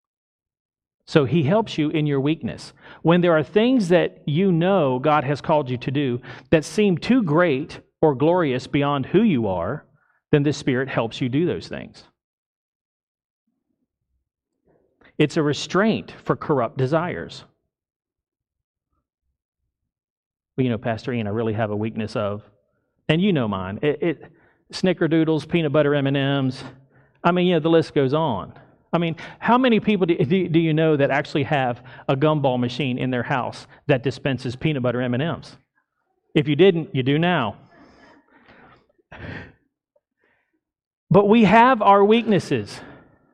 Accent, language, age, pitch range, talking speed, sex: American, English, 40-59, 135-190 Hz, 145 wpm, male